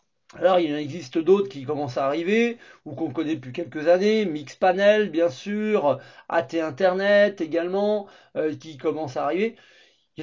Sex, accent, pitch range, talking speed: male, French, 145-210 Hz, 170 wpm